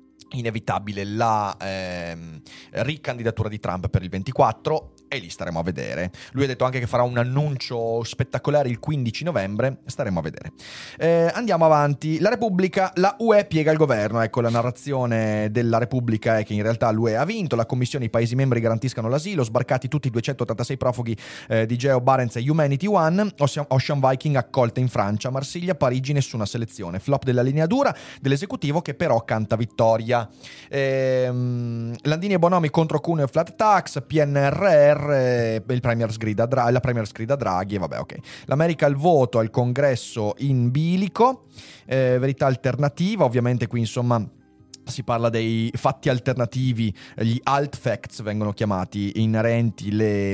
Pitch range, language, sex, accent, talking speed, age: 115-145 Hz, Italian, male, native, 160 wpm, 30-49